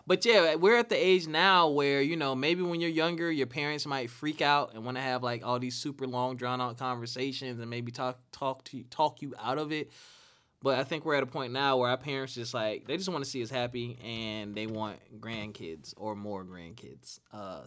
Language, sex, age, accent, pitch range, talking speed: English, male, 20-39, American, 115-140 Hz, 240 wpm